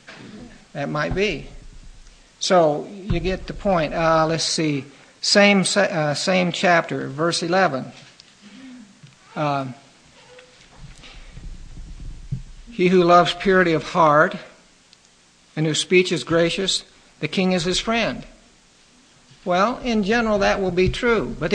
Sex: male